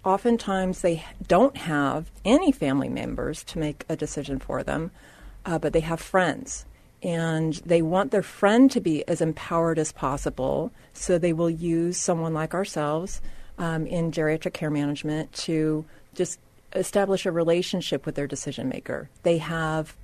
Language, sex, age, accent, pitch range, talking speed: English, female, 40-59, American, 155-180 Hz, 155 wpm